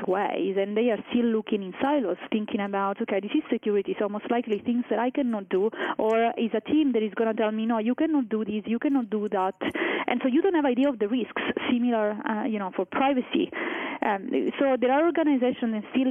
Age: 30-49